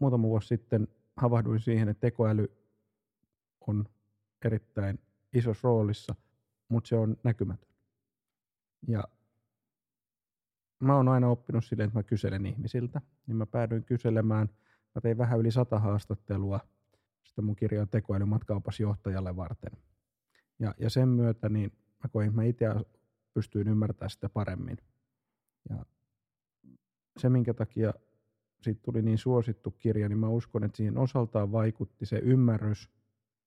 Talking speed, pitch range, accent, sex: 125 wpm, 105-125 Hz, native, male